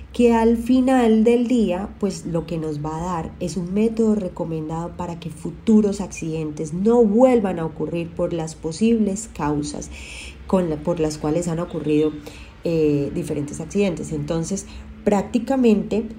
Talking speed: 140 wpm